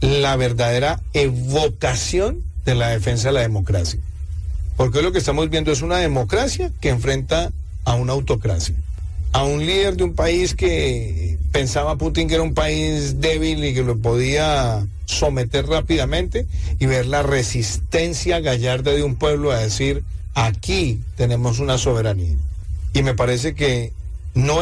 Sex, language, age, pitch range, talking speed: male, English, 40-59, 85-140 Hz, 150 wpm